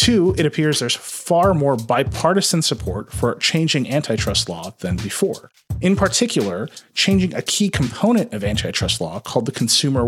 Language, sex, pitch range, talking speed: English, male, 115-165 Hz, 155 wpm